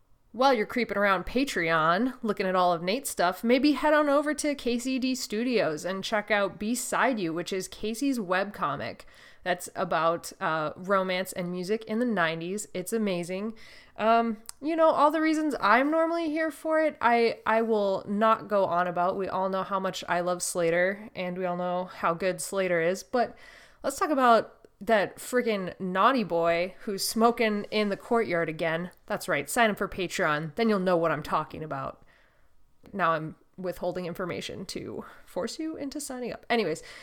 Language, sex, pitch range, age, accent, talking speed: English, female, 180-230 Hz, 20-39, American, 180 wpm